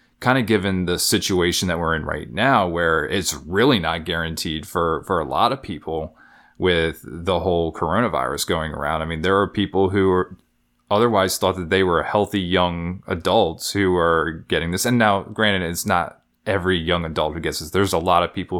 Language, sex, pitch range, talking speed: English, male, 80-95 Hz, 195 wpm